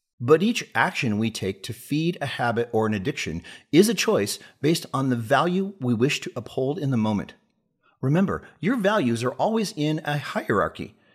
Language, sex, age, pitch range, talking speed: English, male, 40-59, 120-170 Hz, 185 wpm